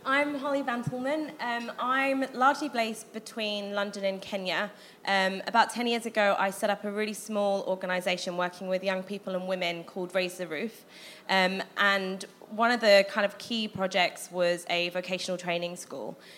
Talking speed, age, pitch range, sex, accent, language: 170 wpm, 20-39, 180-205 Hz, female, British, English